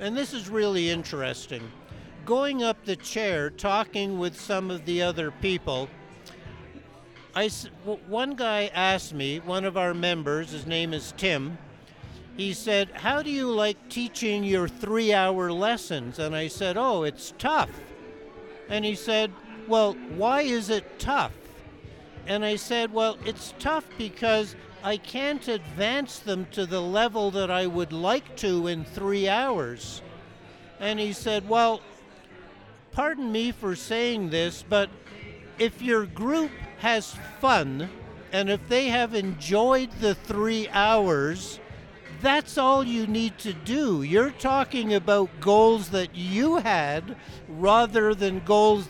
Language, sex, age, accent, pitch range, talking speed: English, male, 60-79, American, 175-225 Hz, 140 wpm